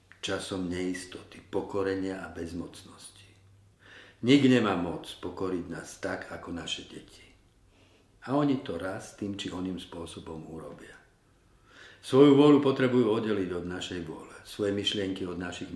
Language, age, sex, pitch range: Slovak, 50-69, male, 95-110 Hz